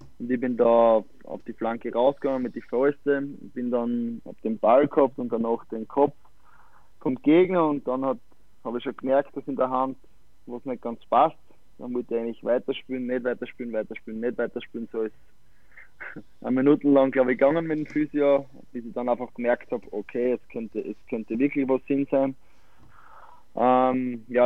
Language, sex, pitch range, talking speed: German, male, 115-140 Hz, 185 wpm